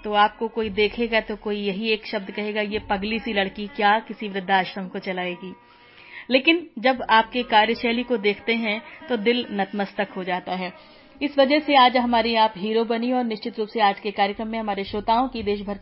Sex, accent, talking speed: female, native, 195 wpm